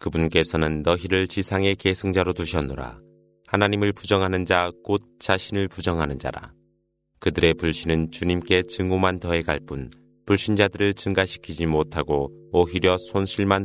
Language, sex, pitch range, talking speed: Arabic, male, 80-95 Hz, 100 wpm